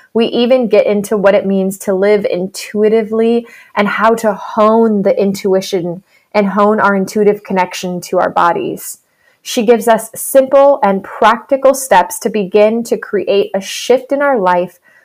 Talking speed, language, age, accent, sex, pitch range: 160 wpm, English, 20-39, American, female, 195-235 Hz